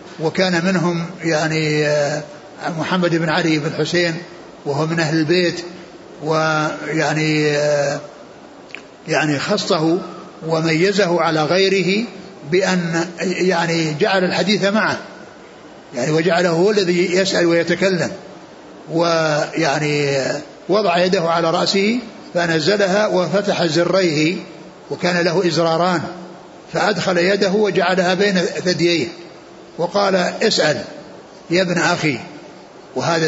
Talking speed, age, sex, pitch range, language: 90 wpm, 60-79, male, 160-185 Hz, Arabic